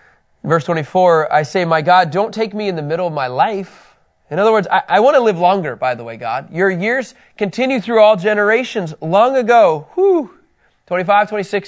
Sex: male